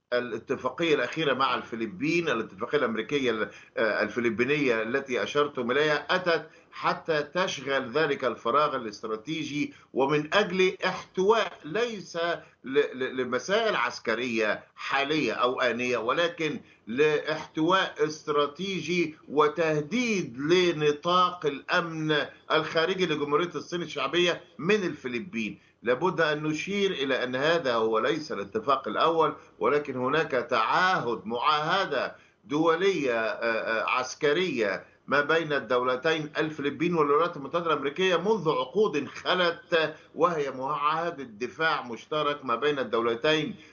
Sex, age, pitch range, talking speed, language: male, 50-69, 130-170 Hz, 95 wpm, English